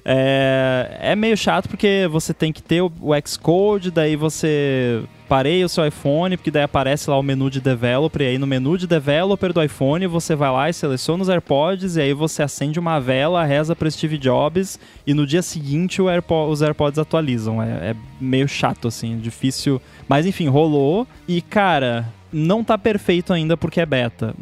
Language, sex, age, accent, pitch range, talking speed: Portuguese, male, 20-39, Brazilian, 135-175 Hz, 190 wpm